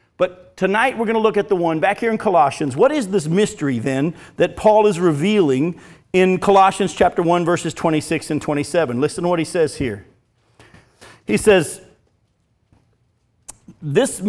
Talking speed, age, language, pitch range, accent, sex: 165 wpm, 50-69, English, 155-210 Hz, American, male